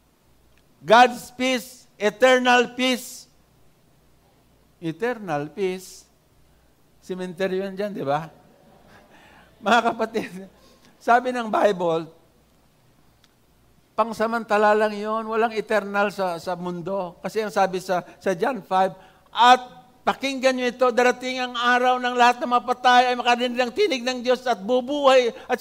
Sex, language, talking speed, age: male, English, 120 wpm, 60-79